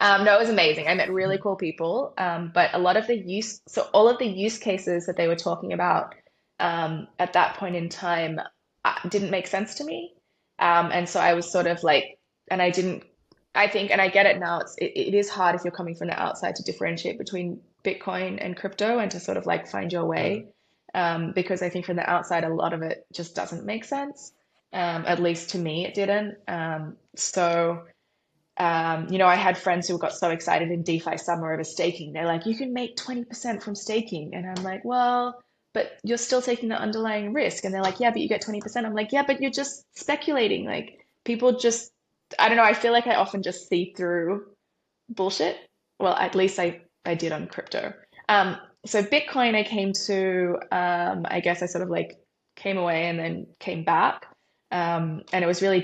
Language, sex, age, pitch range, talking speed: English, female, 20-39, 175-215 Hz, 220 wpm